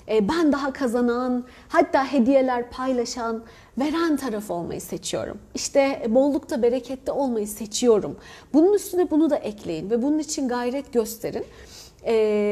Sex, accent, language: female, native, Turkish